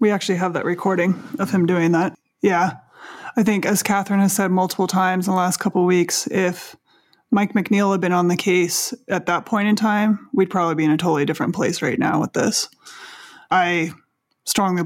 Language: English